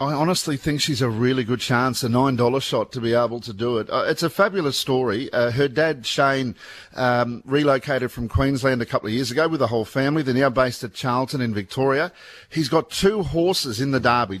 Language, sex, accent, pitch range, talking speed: English, male, Australian, 125-145 Hz, 220 wpm